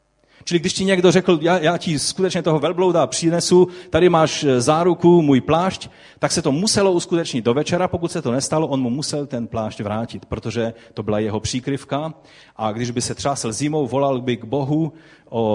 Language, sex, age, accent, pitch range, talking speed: Czech, male, 30-49, native, 110-160 Hz, 195 wpm